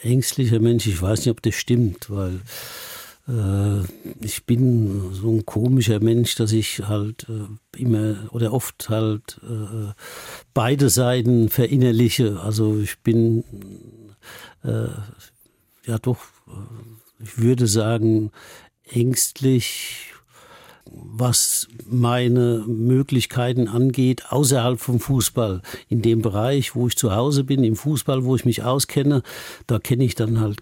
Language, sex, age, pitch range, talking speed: German, male, 60-79, 110-125 Hz, 125 wpm